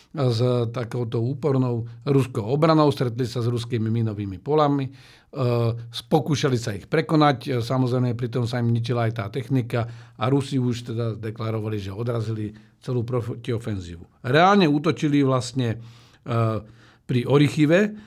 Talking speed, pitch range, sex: 125 wpm, 120-140 Hz, male